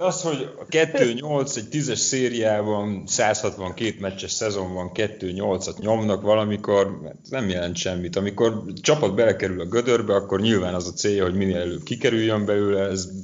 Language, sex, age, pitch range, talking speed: Hungarian, male, 30-49, 90-105 Hz, 150 wpm